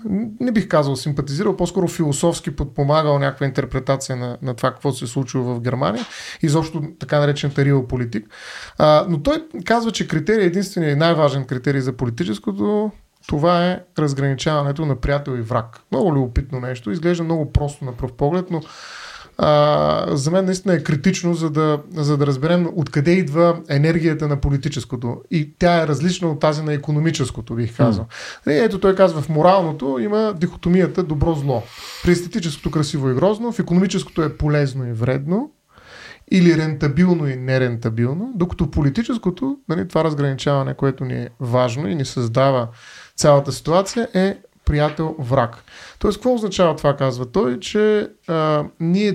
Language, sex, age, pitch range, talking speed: Bulgarian, male, 30-49, 135-180 Hz, 155 wpm